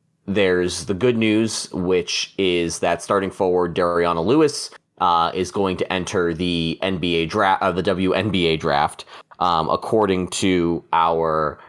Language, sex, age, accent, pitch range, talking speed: English, male, 20-39, American, 80-110 Hz, 145 wpm